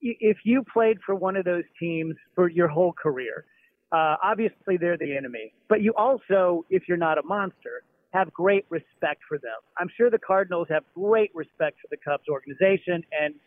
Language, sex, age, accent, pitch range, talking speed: English, male, 40-59, American, 155-200 Hz, 185 wpm